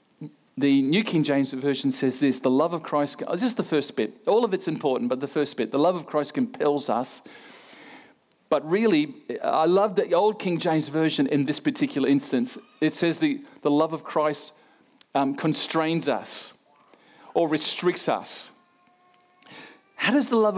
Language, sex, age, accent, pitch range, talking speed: English, male, 40-59, Australian, 155-220 Hz, 170 wpm